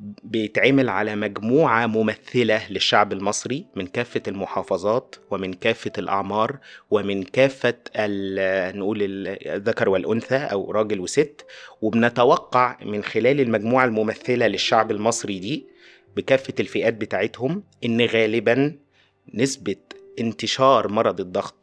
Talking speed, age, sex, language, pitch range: 105 wpm, 20-39, male, Arabic, 105-135 Hz